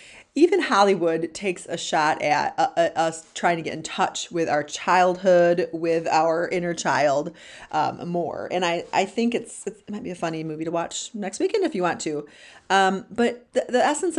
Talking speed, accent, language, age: 190 wpm, American, English, 30-49